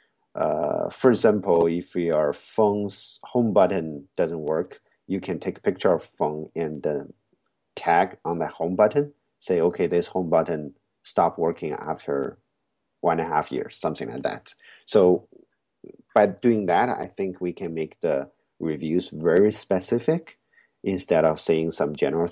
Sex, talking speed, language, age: male, 155 wpm, English, 50-69